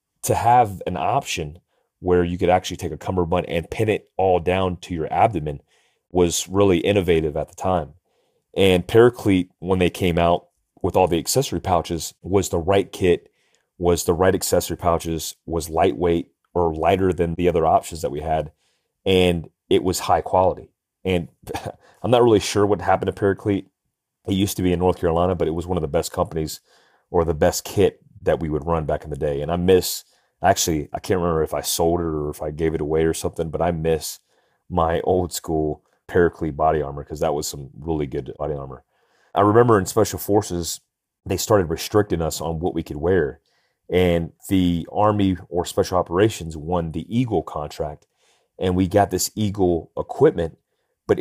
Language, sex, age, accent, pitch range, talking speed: English, male, 30-49, American, 80-95 Hz, 190 wpm